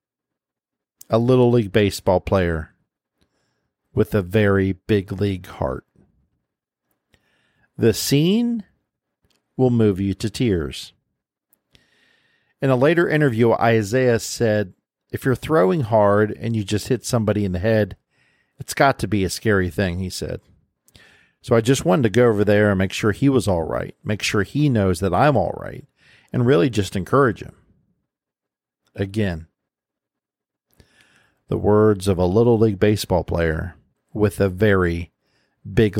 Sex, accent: male, American